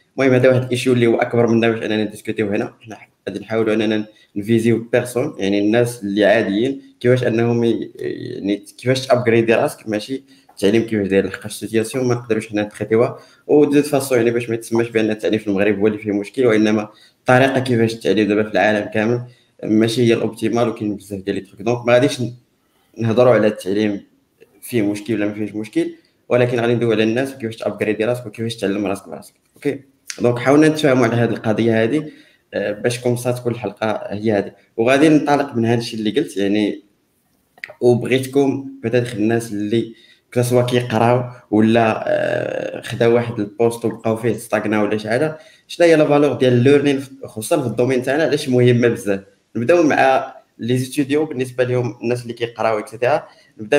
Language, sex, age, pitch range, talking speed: Arabic, male, 20-39, 110-125 Hz, 175 wpm